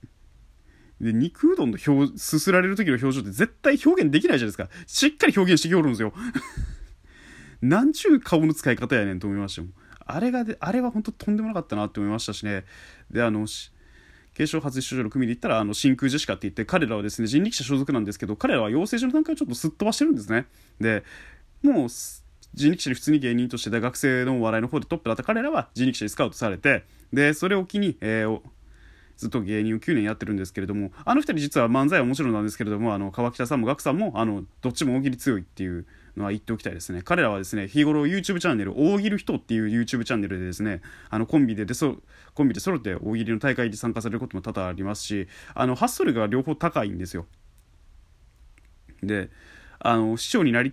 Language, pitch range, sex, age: Japanese, 105-155 Hz, male, 20-39